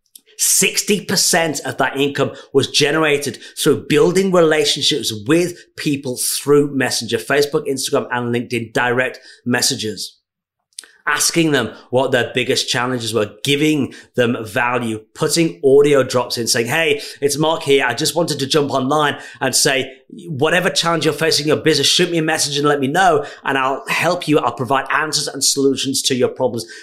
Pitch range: 135-170 Hz